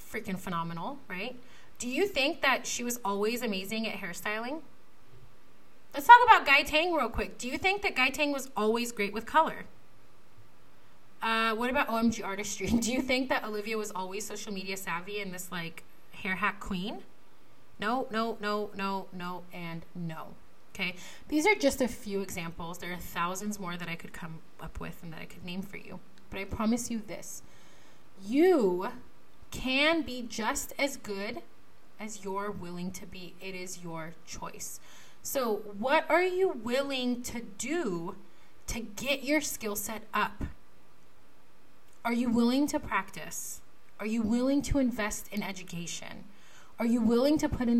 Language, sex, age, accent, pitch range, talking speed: English, female, 30-49, American, 195-275 Hz, 170 wpm